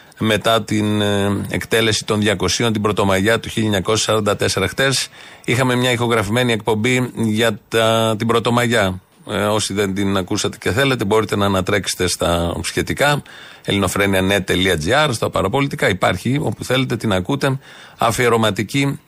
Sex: male